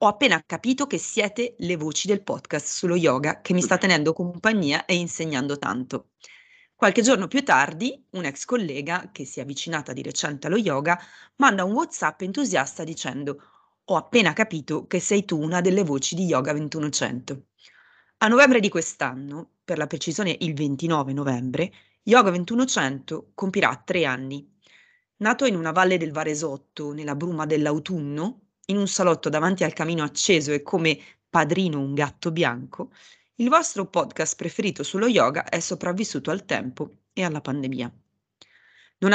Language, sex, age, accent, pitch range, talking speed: Italian, female, 20-39, native, 145-195 Hz, 155 wpm